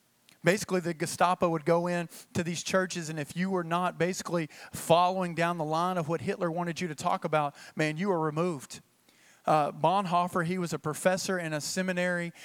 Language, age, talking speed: English, 40-59, 195 wpm